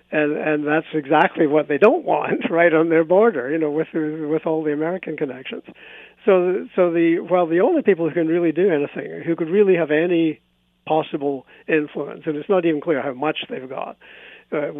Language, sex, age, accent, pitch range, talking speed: English, male, 50-69, American, 145-165 Hz, 200 wpm